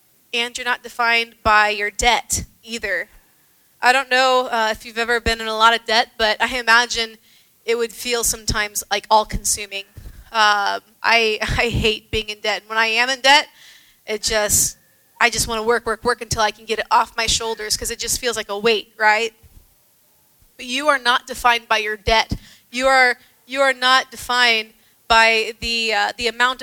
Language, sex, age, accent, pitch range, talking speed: English, female, 20-39, American, 220-255 Hz, 195 wpm